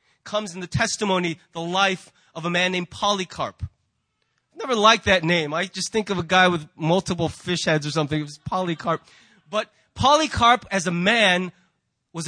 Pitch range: 175-235 Hz